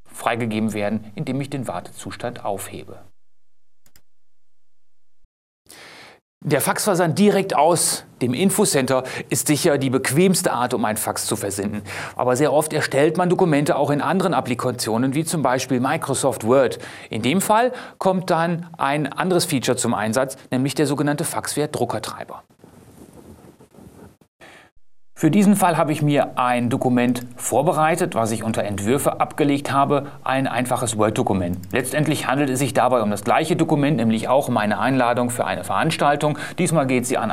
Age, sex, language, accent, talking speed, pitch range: 30-49, male, German, German, 145 wpm, 115-150 Hz